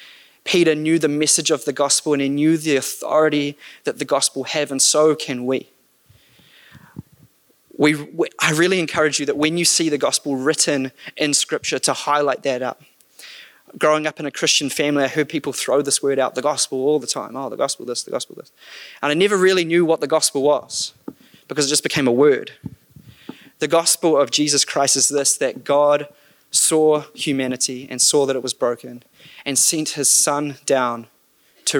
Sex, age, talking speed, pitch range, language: male, 20-39, 190 wpm, 130-155 Hz, English